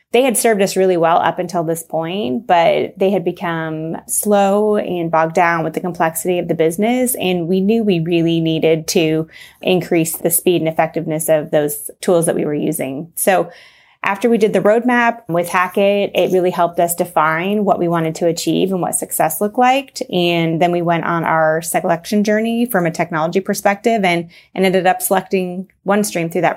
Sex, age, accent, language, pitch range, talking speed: female, 20-39, American, English, 165-200 Hz, 195 wpm